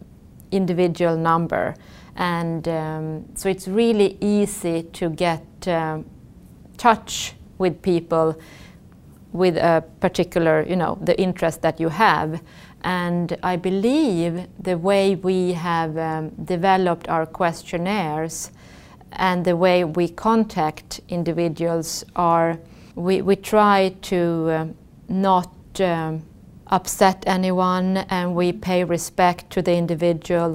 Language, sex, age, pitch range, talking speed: English, female, 30-49, 165-185 Hz, 110 wpm